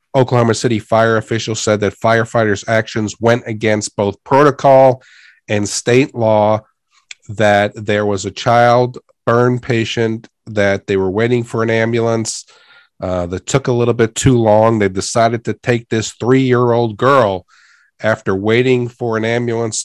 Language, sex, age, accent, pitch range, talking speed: English, male, 40-59, American, 100-120 Hz, 155 wpm